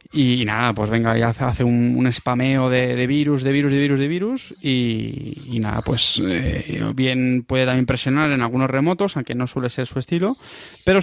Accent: Spanish